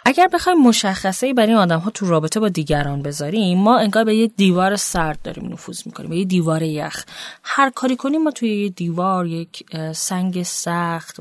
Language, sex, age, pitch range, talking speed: Persian, female, 30-49, 165-240 Hz, 180 wpm